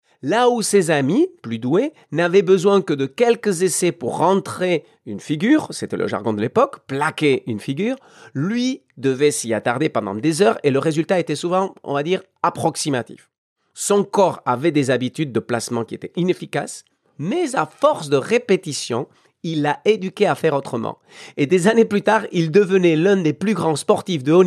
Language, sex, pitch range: French, male, 140-200 Hz